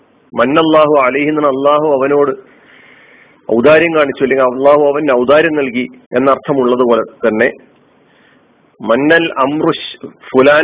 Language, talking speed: Malayalam, 90 wpm